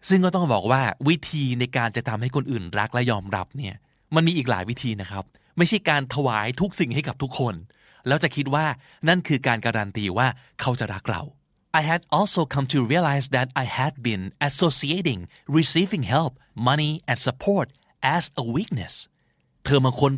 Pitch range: 115-155 Hz